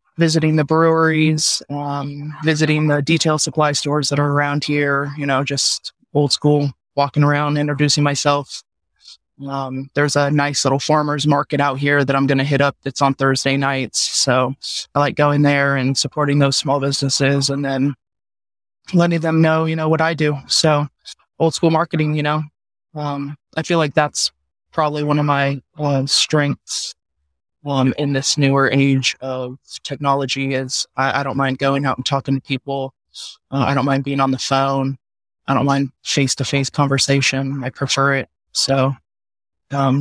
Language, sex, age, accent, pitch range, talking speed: English, male, 20-39, American, 135-150 Hz, 170 wpm